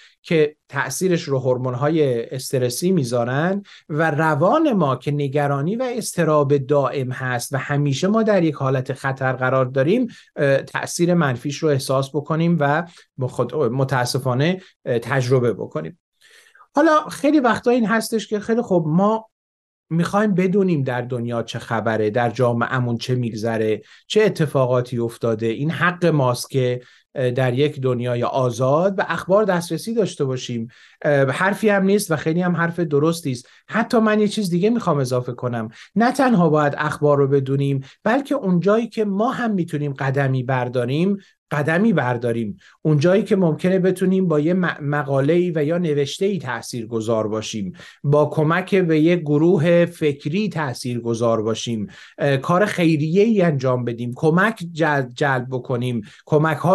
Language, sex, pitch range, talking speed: Persian, male, 130-185 Hz, 140 wpm